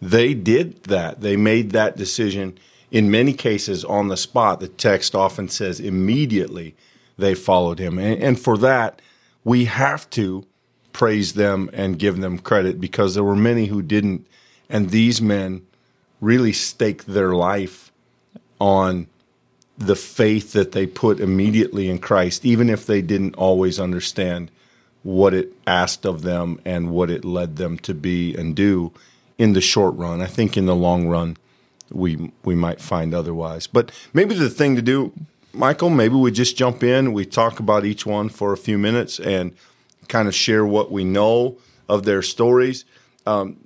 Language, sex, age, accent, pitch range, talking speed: English, male, 40-59, American, 95-115 Hz, 170 wpm